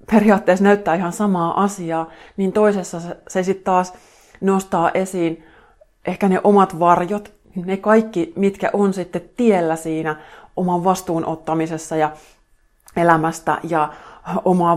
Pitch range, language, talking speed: 160-185 Hz, Finnish, 120 wpm